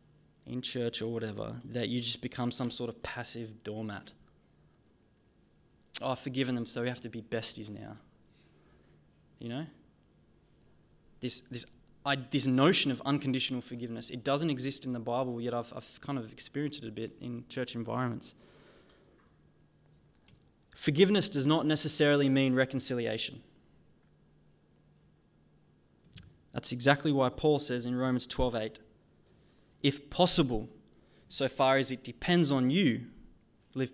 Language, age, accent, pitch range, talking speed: English, 20-39, Australian, 120-140 Hz, 135 wpm